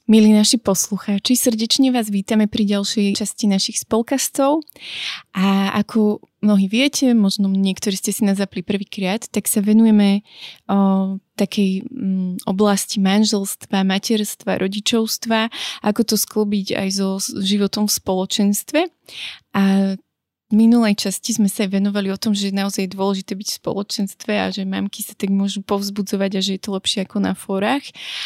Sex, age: female, 20-39